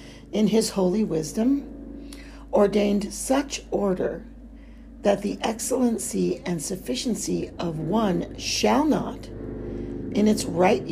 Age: 50-69